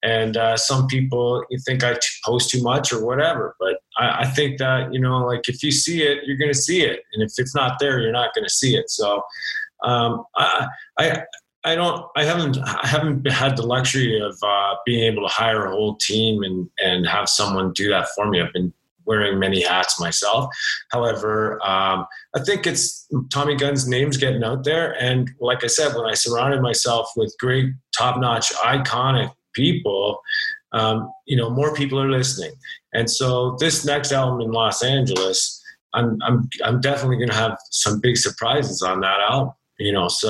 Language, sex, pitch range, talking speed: English, male, 110-140 Hz, 190 wpm